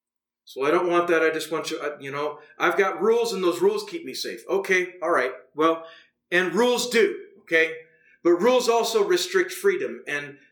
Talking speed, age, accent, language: 195 wpm, 40-59, American, English